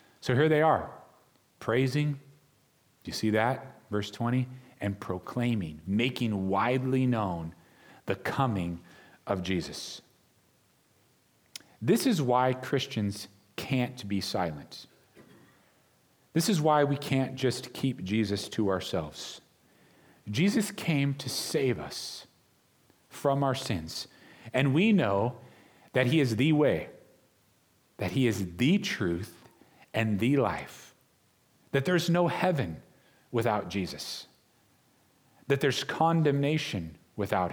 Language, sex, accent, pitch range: English, male, American, 110-155 Hz